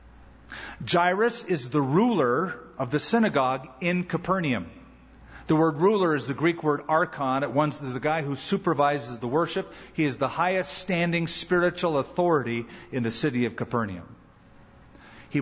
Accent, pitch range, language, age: American, 135-185 Hz, English, 50-69